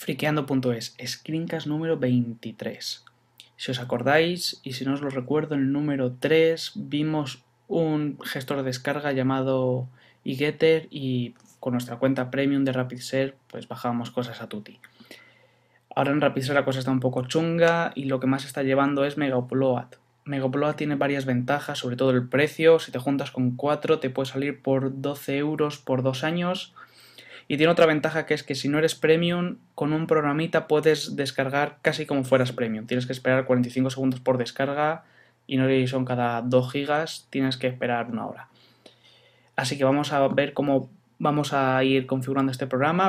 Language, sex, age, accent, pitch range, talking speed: Spanish, male, 20-39, Spanish, 130-150 Hz, 175 wpm